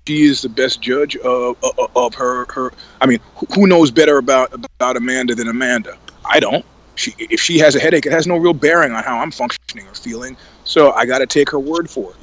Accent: American